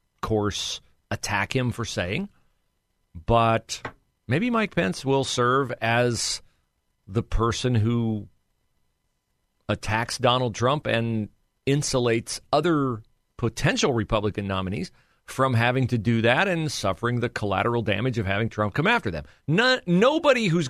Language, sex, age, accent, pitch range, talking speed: English, male, 40-59, American, 105-140 Hz, 120 wpm